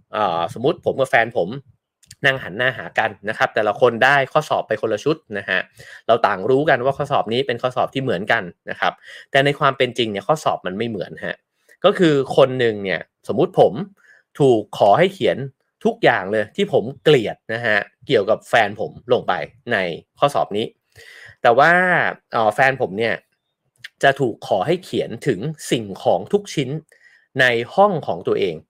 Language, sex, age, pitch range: English, male, 30-49, 120-180 Hz